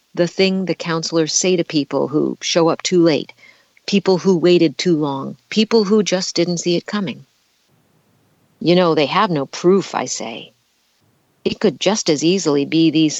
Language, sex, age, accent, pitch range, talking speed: English, female, 50-69, American, 150-190 Hz, 175 wpm